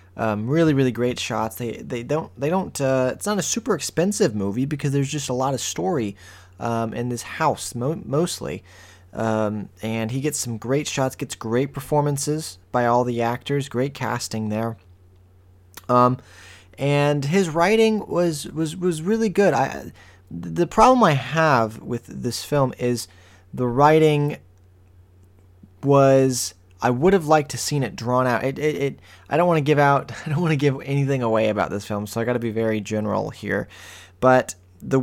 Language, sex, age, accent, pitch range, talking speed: English, male, 20-39, American, 100-145 Hz, 180 wpm